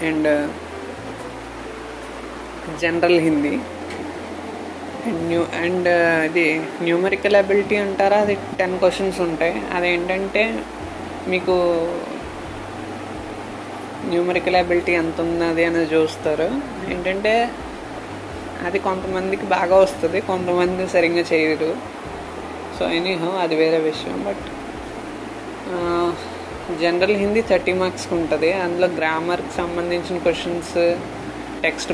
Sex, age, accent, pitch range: female, 20-39, native, 165-190 Hz